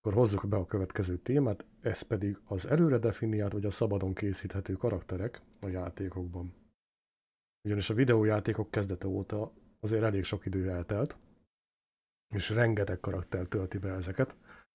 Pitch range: 95-110 Hz